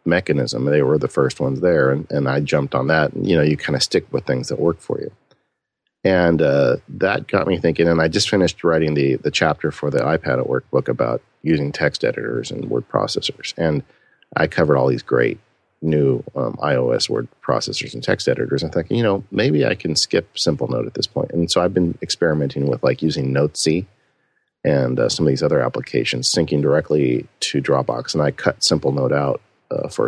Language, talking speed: English, 210 wpm